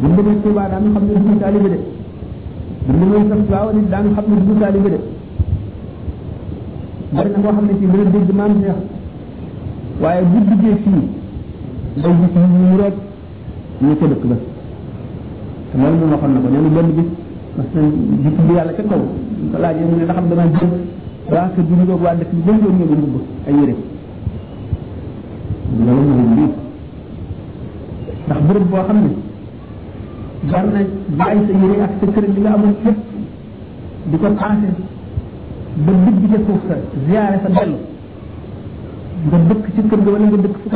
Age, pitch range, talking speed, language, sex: 50-69, 140-205 Hz, 120 wpm, French, male